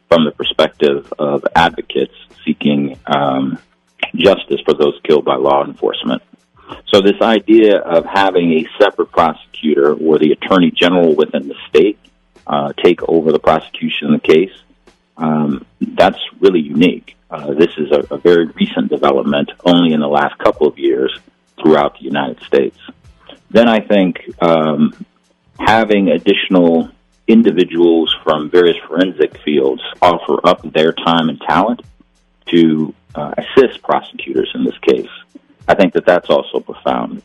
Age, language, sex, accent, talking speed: 50-69, English, male, American, 145 wpm